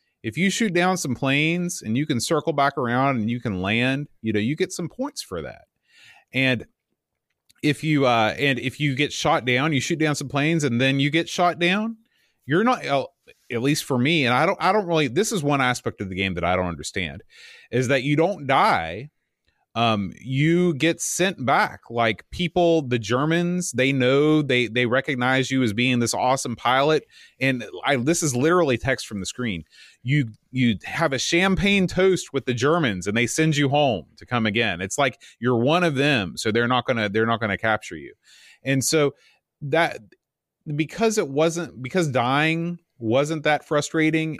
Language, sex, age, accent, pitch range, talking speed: English, male, 30-49, American, 120-165 Hz, 200 wpm